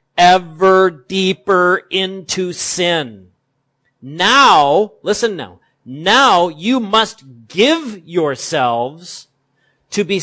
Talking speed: 80 wpm